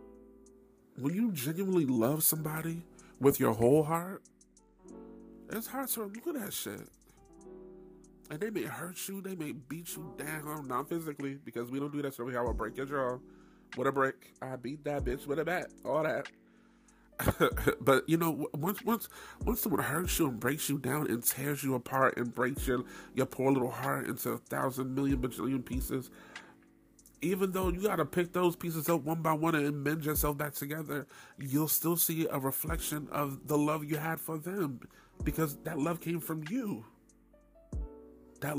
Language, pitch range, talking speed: English, 130-165 Hz, 180 wpm